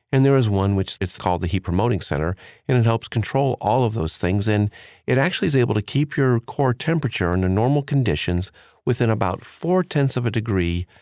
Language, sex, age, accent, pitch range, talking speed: English, male, 40-59, American, 95-125 Hz, 205 wpm